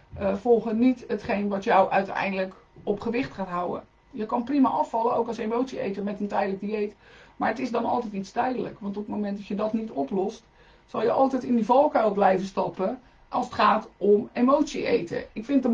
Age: 50-69